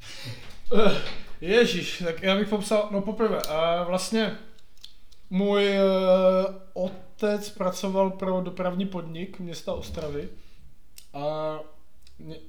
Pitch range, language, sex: 155-185 Hz, Czech, male